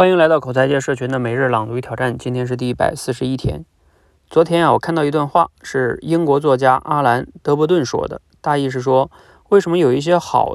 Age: 20-39